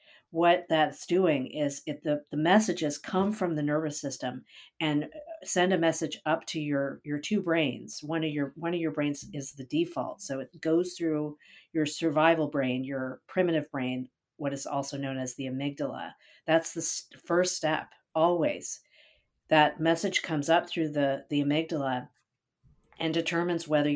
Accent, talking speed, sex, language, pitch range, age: American, 165 wpm, female, English, 145-165 Hz, 50-69